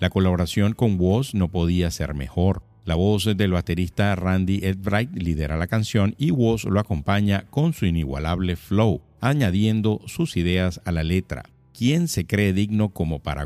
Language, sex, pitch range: Spanish, male, 85-110 Hz